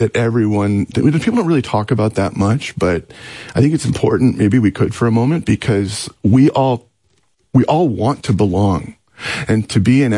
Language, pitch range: English, 105-140 Hz